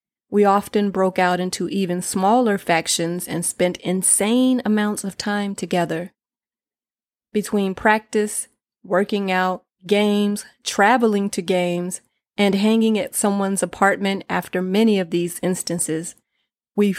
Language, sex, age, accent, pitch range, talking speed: English, female, 30-49, American, 180-210 Hz, 120 wpm